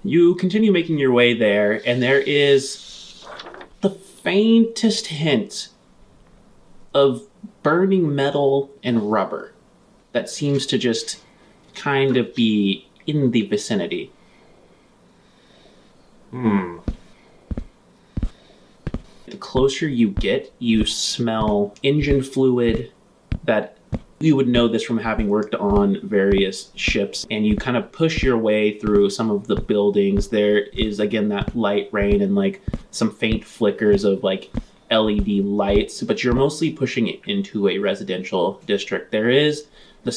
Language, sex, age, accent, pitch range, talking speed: English, male, 30-49, American, 105-145 Hz, 130 wpm